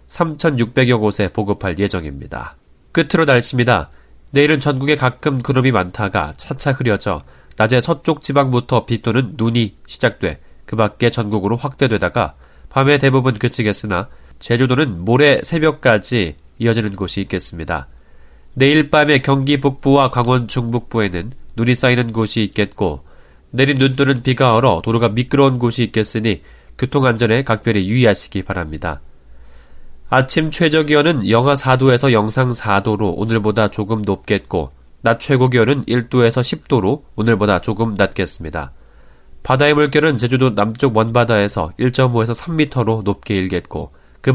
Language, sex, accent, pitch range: Korean, male, native, 100-135 Hz